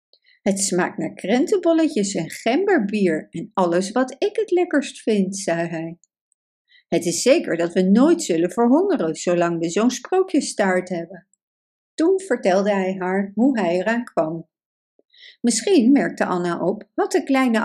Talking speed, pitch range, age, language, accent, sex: 150 wpm, 180-285 Hz, 60-79, Dutch, Dutch, female